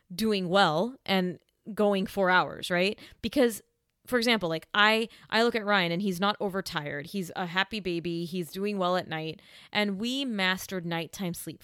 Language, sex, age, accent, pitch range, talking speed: English, female, 30-49, American, 175-215 Hz, 175 wpm